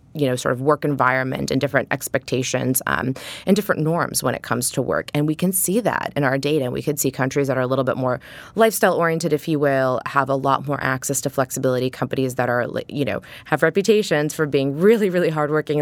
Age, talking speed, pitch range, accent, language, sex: 20-39, 230 wpm, 130-160 Hz, American, English, female